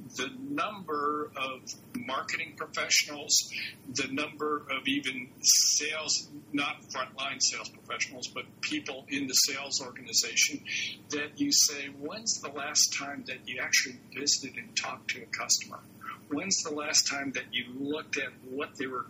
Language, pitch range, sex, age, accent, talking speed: English, 140-170 Hz, male, 60-79, American, 150 wpm